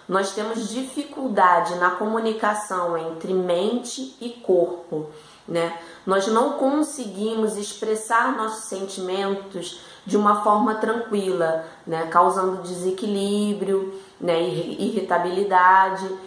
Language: Portuguese